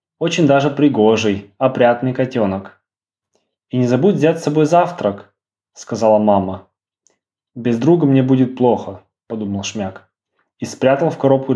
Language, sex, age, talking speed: Ukrainian, male, 20-39, 130 wpm